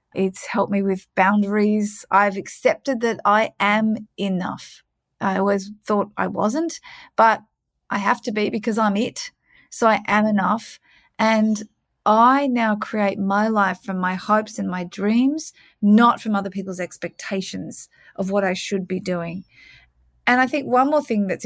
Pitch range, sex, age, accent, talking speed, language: 195-230 Hz, female, 30-49, Australian, 160 wpm, English